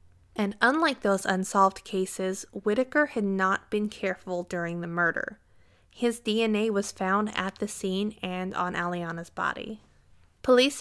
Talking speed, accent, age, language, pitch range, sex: 140 wpm, American, 20-39, English, 190-225 Hz, female